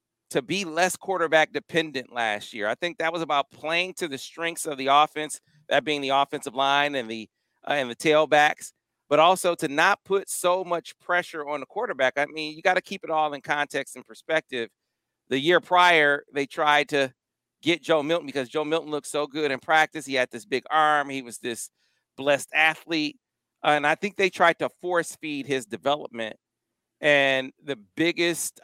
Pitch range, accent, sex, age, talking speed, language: 135-165 Hz, American, male, 40-59, 195 wpm, English